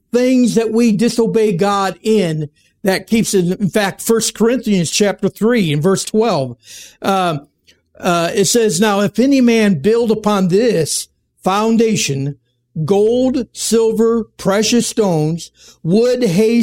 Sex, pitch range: male, 175-225 Hz